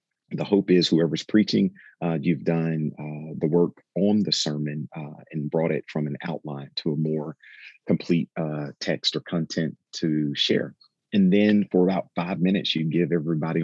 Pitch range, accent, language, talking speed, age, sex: 75-90 Hz, American, English, 175 wpm, 40-59, male